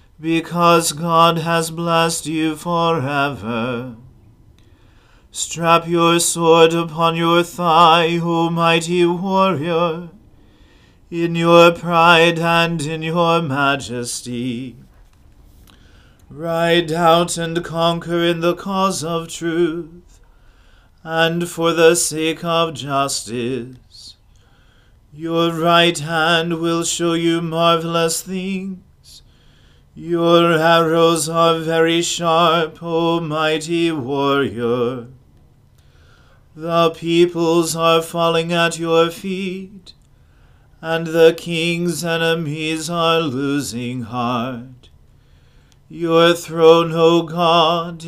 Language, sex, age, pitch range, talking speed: English, male, 40-59, 155-170 Hz, 90 wpm